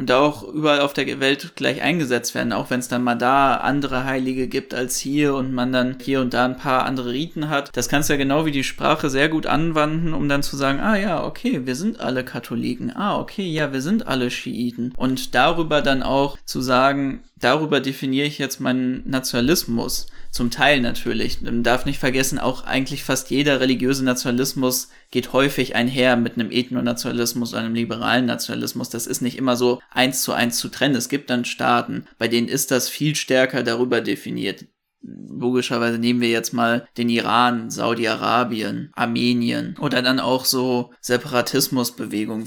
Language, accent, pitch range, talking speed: German, German, 120-135 Hz, 185 wpm